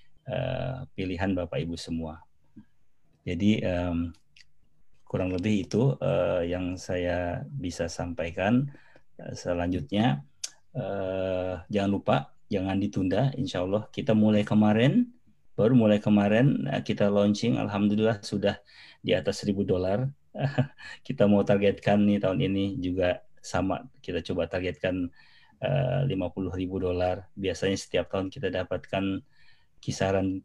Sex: male